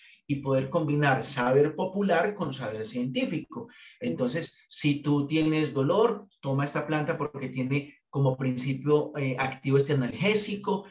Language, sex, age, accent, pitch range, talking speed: Spanish, male, 30-49, Colombian, 130-180 Hz, 130 wpm